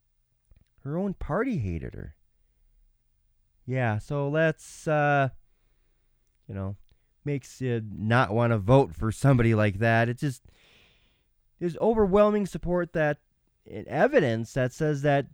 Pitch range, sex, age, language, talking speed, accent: 120-195 Hz, male, 20-39, English, 120 wpm, American